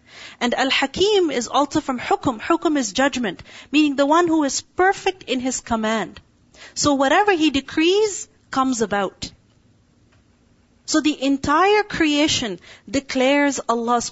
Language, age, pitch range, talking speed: English, 40-59, 240-305 Hz, 130 wpm